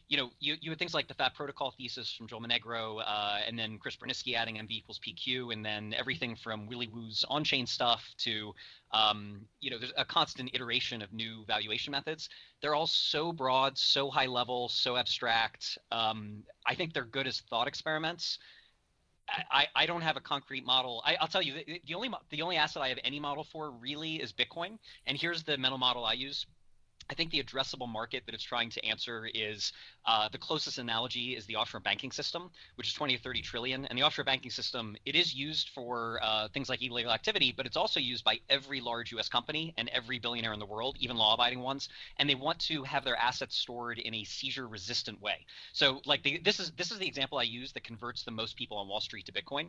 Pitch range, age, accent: 115-140 Hz, 30-49, American